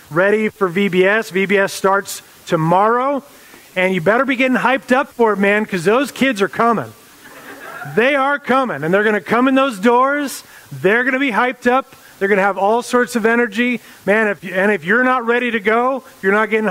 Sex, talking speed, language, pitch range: male, 215 wpm, English, 180-215 Hz